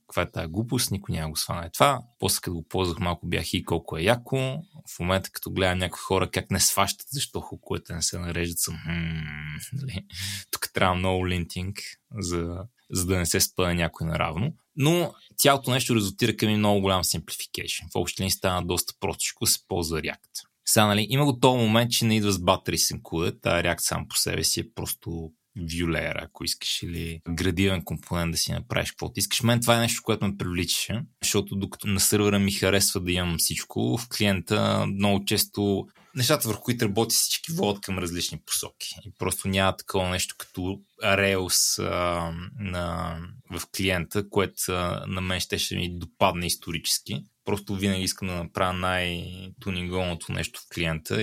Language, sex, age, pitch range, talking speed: Bulgarian, male, 20-39, 85-105 Hz, 175 wpm